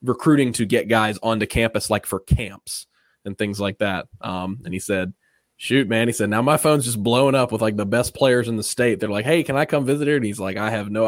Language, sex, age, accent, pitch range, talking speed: English, male, 20-39, American, 100-120 Hz, 265 wpm